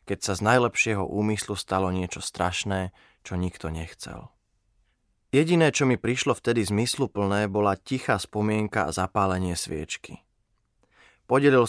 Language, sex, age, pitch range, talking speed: Slovak, male, 20-39, 95-120 Hz, 125 wpm